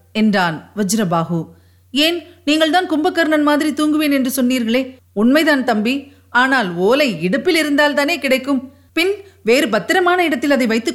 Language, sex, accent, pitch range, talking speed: Tamil, female, native, 195-270 Hz, 120 wpm